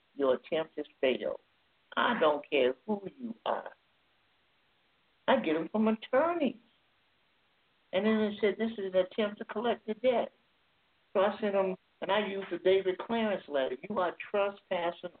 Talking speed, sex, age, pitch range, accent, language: 160 wpm, male, 60-79, 160-210 Hz, American, English